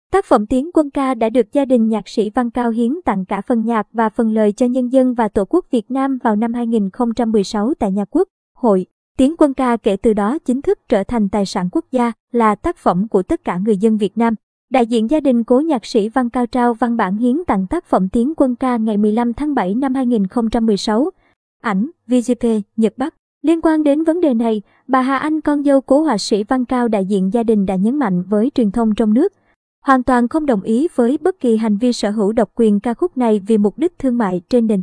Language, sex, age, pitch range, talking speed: Vietnamese, male, 20-39, 220-270 Hz, 245 wpm